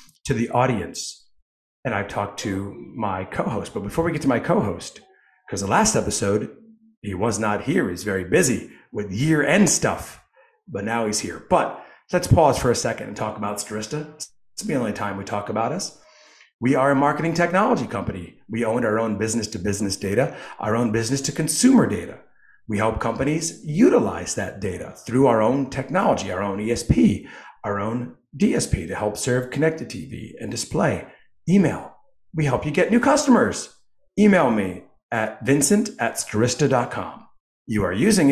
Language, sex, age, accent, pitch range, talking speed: English, male, 40-59, American, 105-150 Hz, 165 wpm